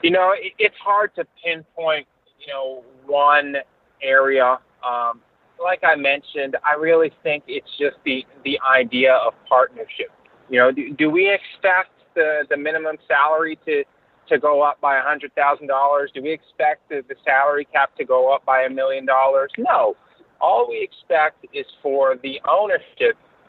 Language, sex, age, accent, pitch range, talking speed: English, male, 30-49, American, 135-185 Hz, 160 wpm